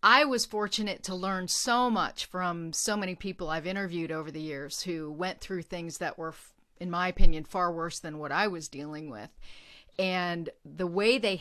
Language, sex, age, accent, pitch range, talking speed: English, female, 40-59, American, 170-200 Hz, 195 wpm